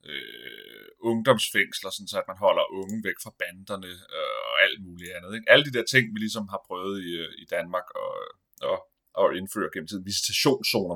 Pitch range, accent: 95-130 Hz, native